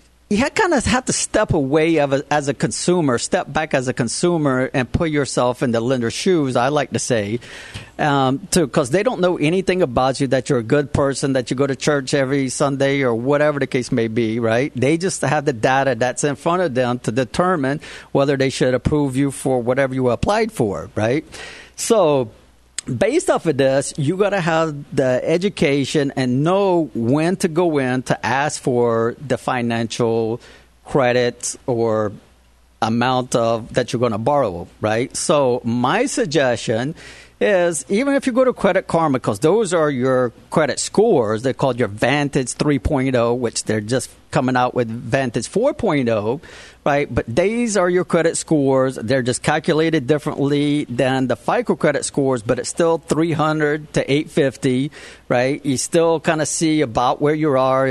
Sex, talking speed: male, 180 wpm